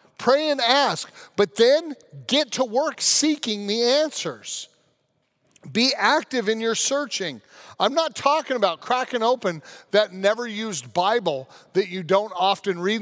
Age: 40-59